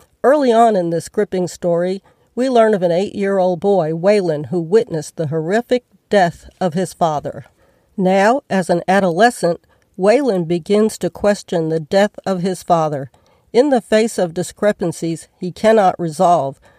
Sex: female